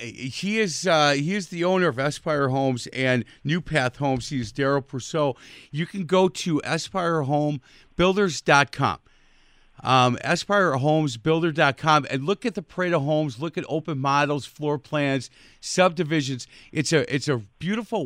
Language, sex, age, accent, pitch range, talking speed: English, male, 40-59, American, 130-170 Hz, 145 wpm